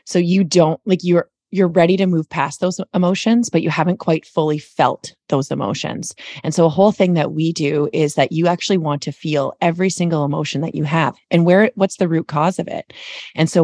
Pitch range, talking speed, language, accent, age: 150-180 Hz, 225 wpm, English, American, 30-49